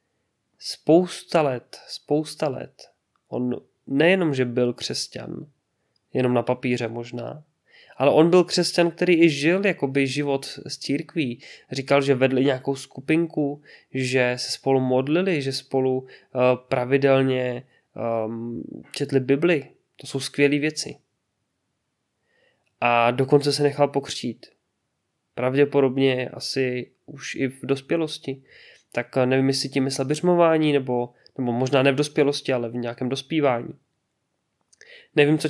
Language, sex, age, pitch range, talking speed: Czech, male, 20-39, 130-150 Hz, 120 wpm